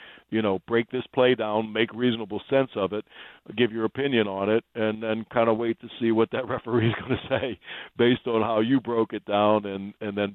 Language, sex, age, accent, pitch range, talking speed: English, male, 60-79, American, 100-110 Hz, 230 wpm